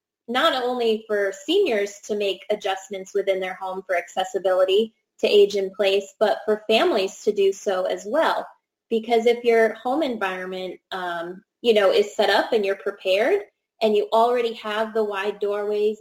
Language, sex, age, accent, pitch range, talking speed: English, female, 20-39, American, 195-230 Hz, 170 wpm